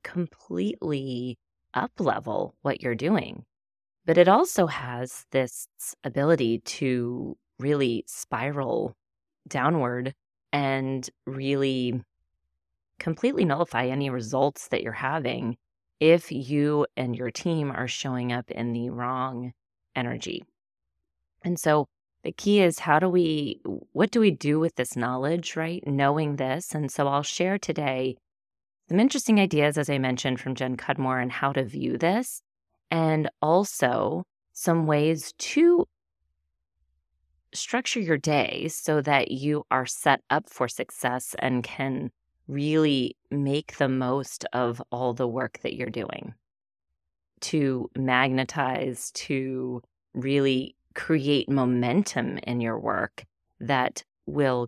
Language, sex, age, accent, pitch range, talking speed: English, female, 30-49, American, 125-155 Hz, 125 wpm